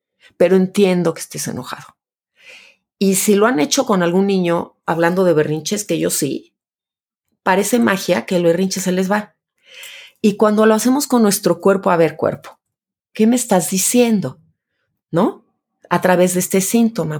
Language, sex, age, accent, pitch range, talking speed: Spanish, female, 30-49, Mexican, 175-215 Hz, 165 wpm